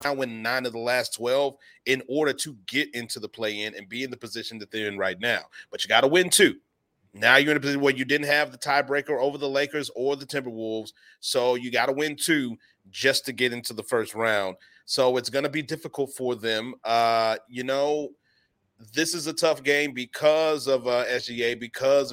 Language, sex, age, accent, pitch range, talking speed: English, male, 30-49, American, 115-140 Hz, 220 wpm